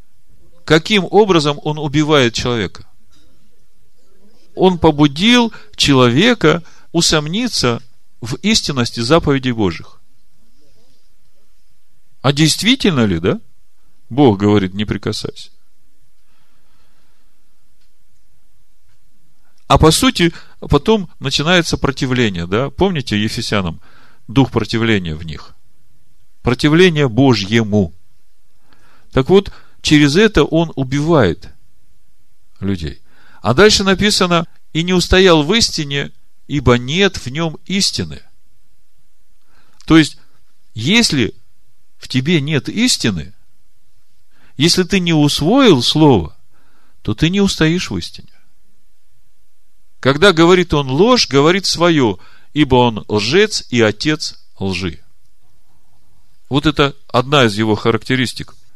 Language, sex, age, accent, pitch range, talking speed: Russian, male, 40-59, native, 110-170 Hz, 95 wpm